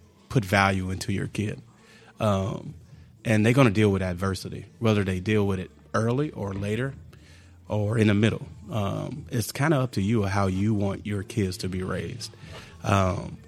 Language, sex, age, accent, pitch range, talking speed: English, male, 30-49, American, 95-110 Hz, 185 wpm